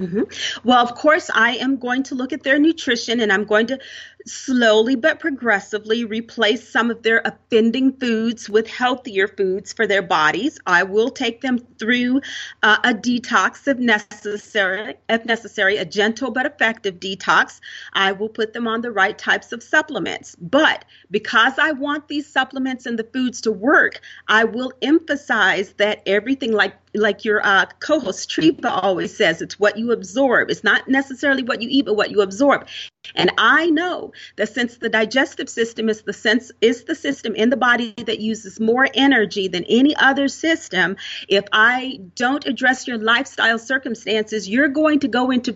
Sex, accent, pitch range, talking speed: female, American, 220-265 Hz, 175 wpm